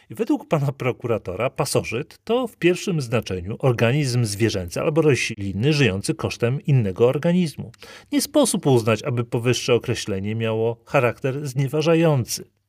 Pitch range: 105-125 Hz